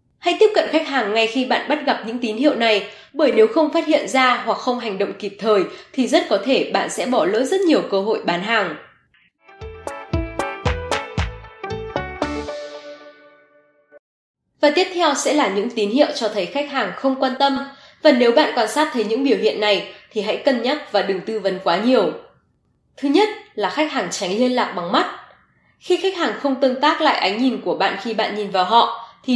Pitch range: 210-285 Hz